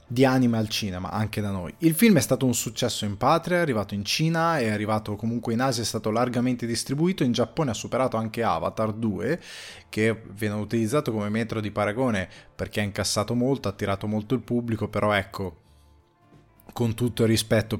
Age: 20-39